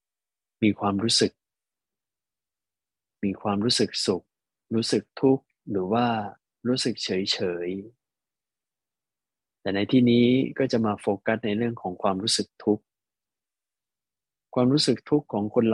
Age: 20-39